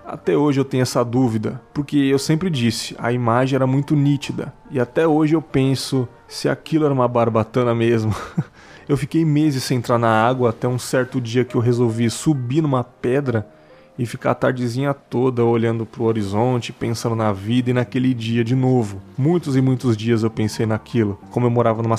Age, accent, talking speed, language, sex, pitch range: 20-39, Brazilian, 190 wpm, Portuguese, male, 115-140 Hz